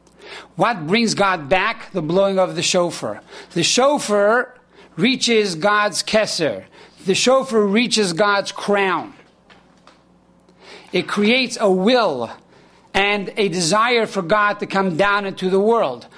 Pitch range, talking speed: 195-230 Hz, 125 wpm